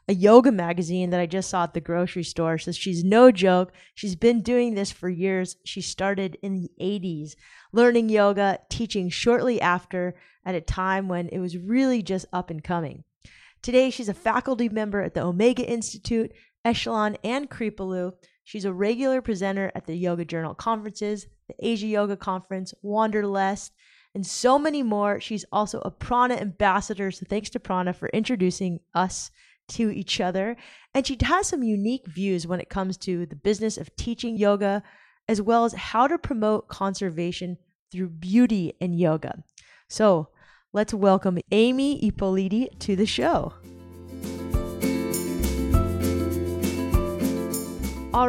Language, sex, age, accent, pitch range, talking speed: English, female, 20-39, American, 175-220 Hz, 150 wpm